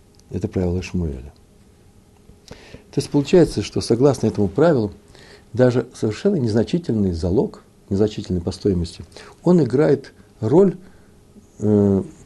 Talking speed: 100 wpm